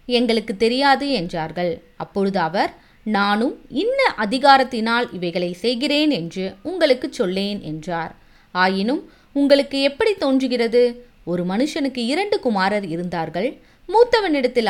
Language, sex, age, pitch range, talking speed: Tamil, female, 20-39, 185-285 Hz, 100 wpm